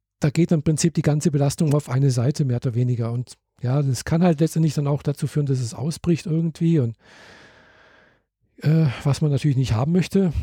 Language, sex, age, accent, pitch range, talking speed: German, male, 50-69, German, 135-160 Hz, 200 wpm